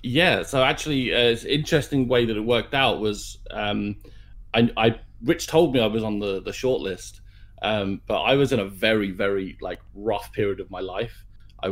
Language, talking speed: English, 205 wpm